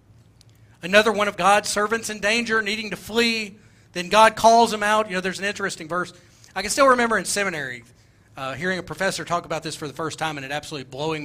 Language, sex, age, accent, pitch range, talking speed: English, male, 40-59, American, 125-210 Hz, 225 wpm